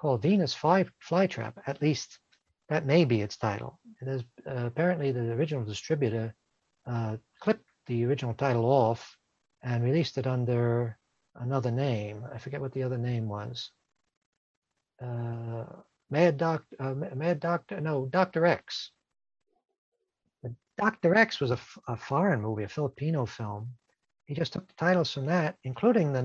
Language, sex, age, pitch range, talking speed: English, male, 60-79, 120-165 Hz, 150 wpm